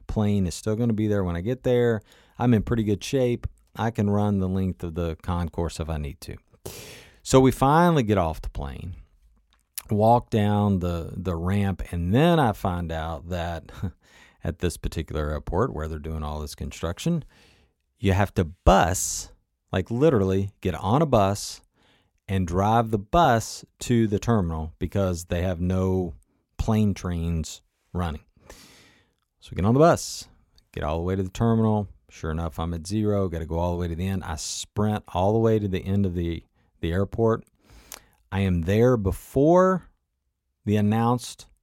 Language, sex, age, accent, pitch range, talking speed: English, male, 40-59, American, 85-115 Hz, 180 wpm